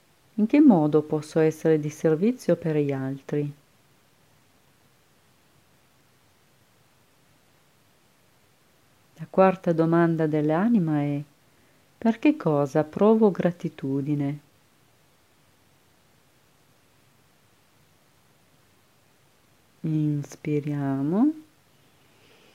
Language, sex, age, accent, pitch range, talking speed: English, female, 40-59, Italian, 145-180 Hz, 55 wpm